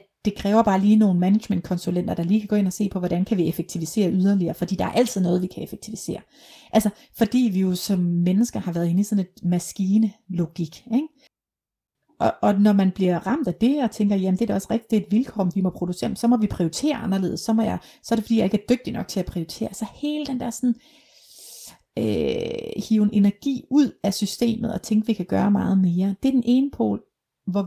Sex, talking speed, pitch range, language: female, 235 wpm, 190-245 Hz, Danish